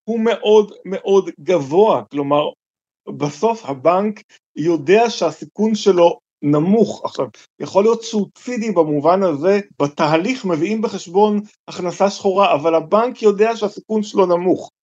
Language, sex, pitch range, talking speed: Hebrew, male, 150-215 Hz, 115 wpm